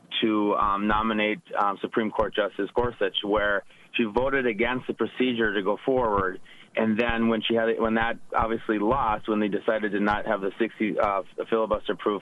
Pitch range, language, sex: 110-125 Hz, English, male